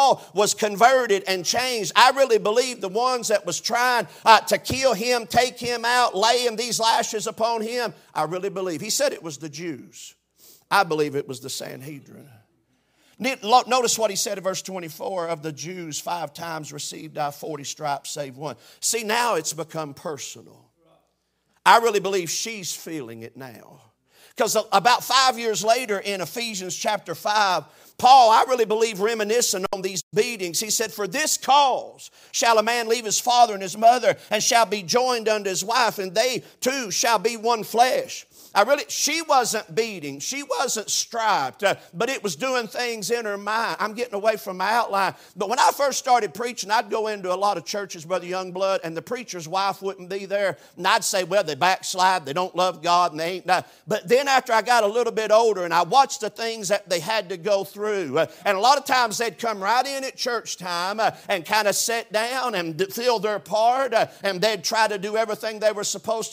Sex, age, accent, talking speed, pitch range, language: male, 50-69, American, 200 wpm, 185-235 Hz, English